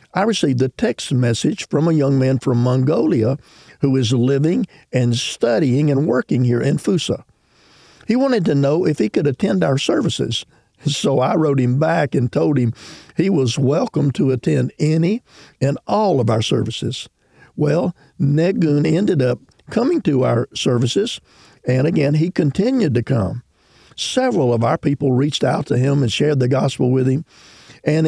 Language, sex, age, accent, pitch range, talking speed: English, male, 50-69, American, 125-155 Hz, 170 wpm